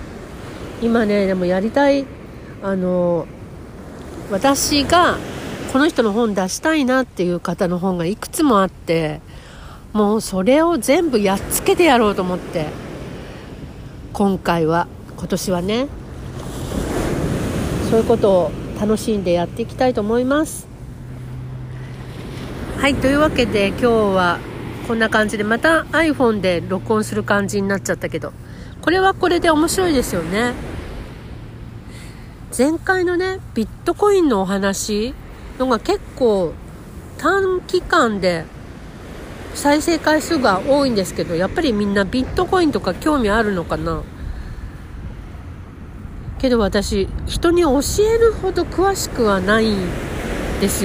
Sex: female